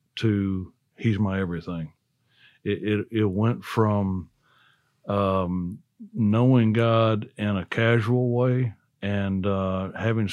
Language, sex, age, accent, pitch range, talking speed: English, male, 60-79, American, 100-120 Hz, 110 wpm